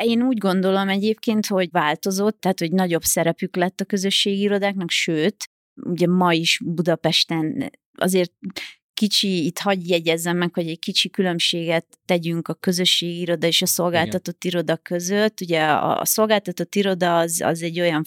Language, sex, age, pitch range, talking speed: Hungarian, female, 30-49, 165-195 Hz, 155 wpm